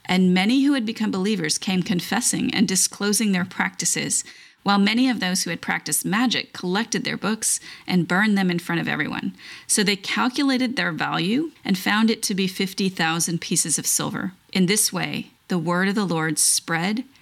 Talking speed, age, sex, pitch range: 185 wpm, 30-49, female, 180-225 Hz